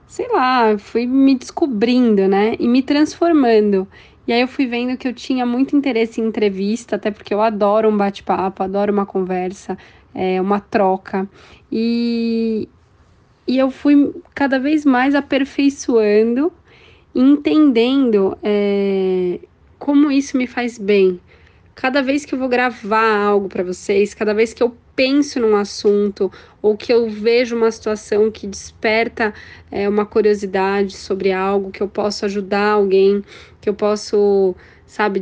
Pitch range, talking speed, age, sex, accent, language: 200-245 Hz, 145 wpm, 20-39, female, Brazilian, Portuguese